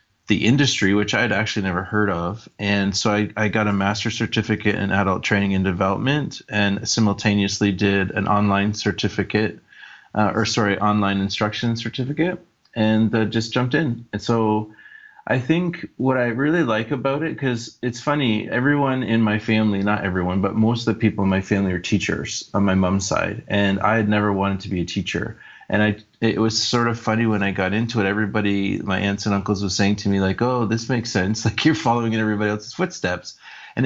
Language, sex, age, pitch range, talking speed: English, male, 30-49, 100-115 Hz, 205 wpm